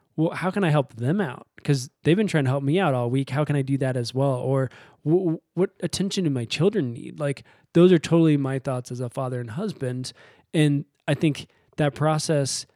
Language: English